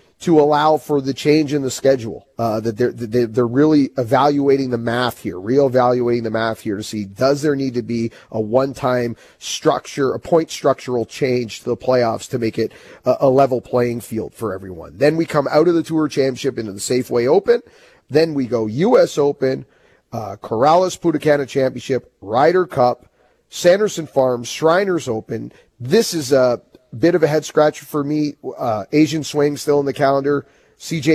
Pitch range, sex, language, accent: 125-155 Hz, male, English, American